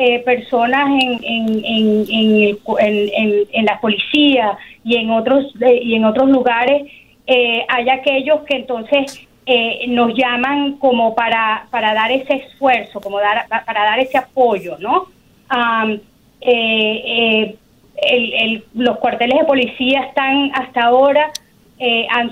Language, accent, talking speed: Spanish, American, 145 wpm